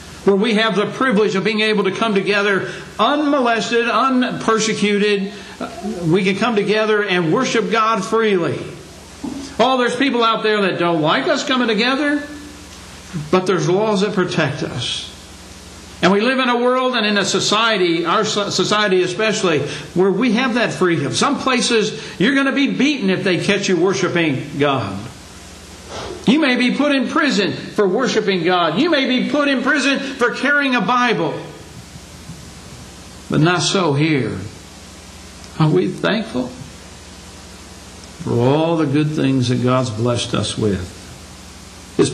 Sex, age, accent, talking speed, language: male, 60-79, American, 150 wpm, English